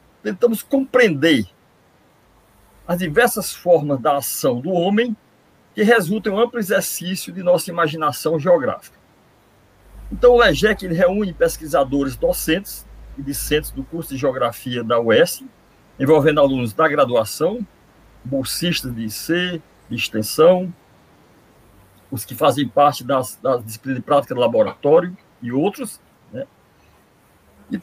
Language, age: Portuguese, 50-69